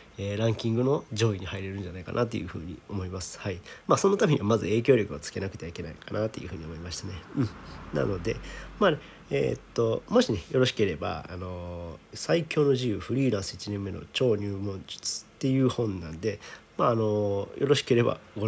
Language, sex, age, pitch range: Japanese, male, 40-59, 95-125 Hz